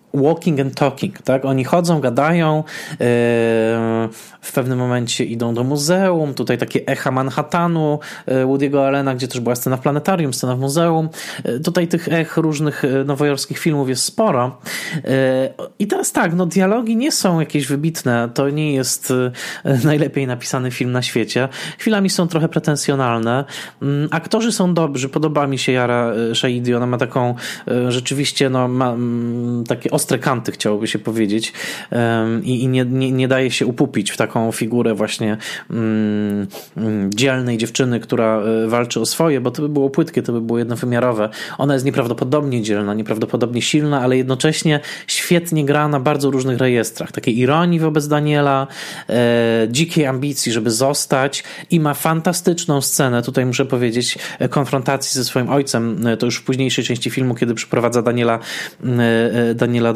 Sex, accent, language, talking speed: male, native, Polish, 155 wpm